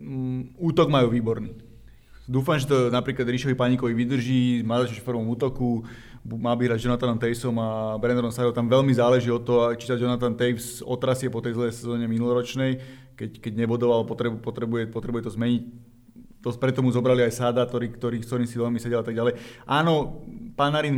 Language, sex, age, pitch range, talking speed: Slovak, male, 20-39, 115-130 Hz, 175 wpm